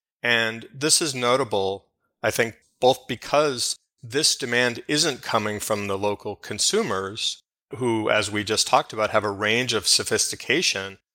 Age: 30-49